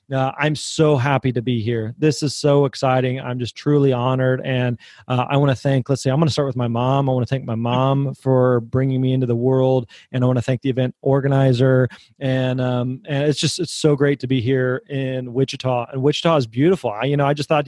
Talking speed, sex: 250 wpm, male